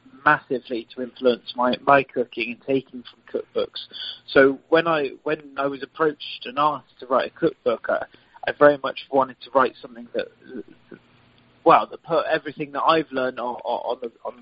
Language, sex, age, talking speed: English, male, 30-49, 180 wpm